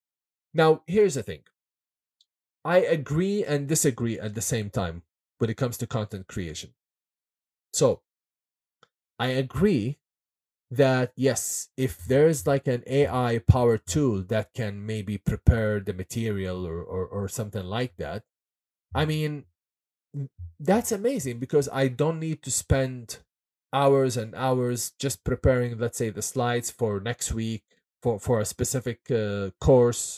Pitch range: 105-140 Hz